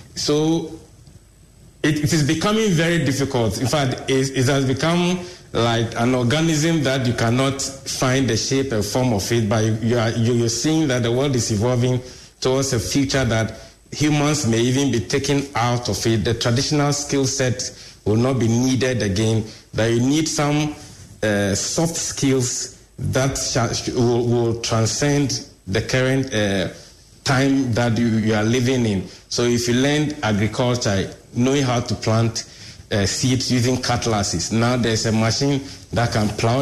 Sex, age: male, 50-69